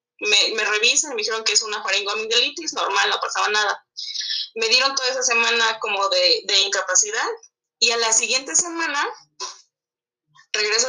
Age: 20-39